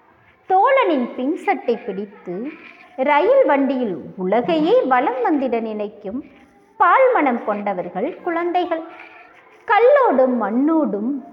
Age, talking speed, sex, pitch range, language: 20-39, 75 wpm, female, 235-335 Hz, English